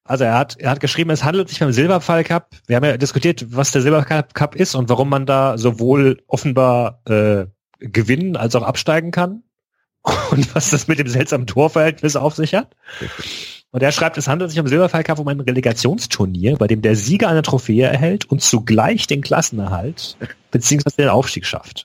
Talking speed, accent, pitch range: 190 wpm, German, 120-155 Hz